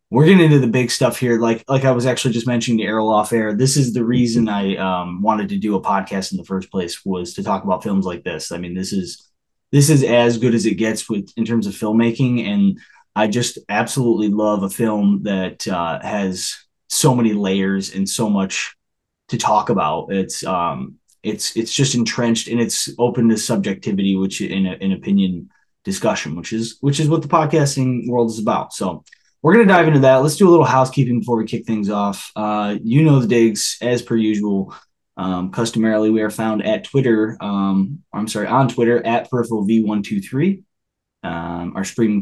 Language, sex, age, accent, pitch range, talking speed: English, male, 20-39, American, 100-130 Hz, 205 wpm